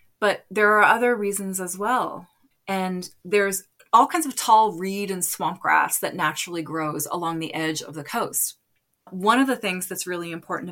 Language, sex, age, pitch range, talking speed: English, female, 30-49, 170-215 Hz, 185 wpm